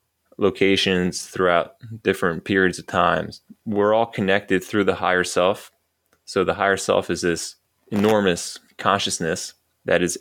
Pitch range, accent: 85-95 Hz, American